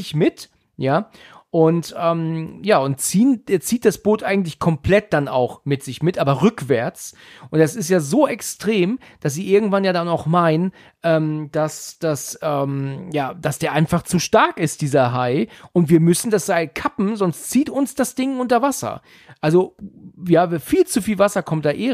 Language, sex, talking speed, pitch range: German, male, 185 wpm, 155-210 Hz